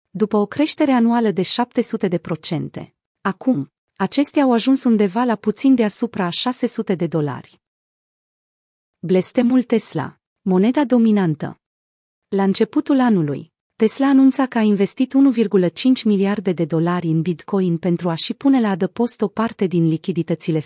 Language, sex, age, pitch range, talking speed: Romanian, female, 30-49, 175-235 Hz, 135 wpm